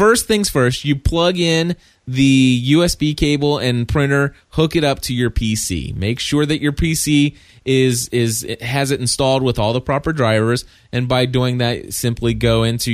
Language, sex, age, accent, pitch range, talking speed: English, male, 30-49, American, 110-140 Hz, 180 wpm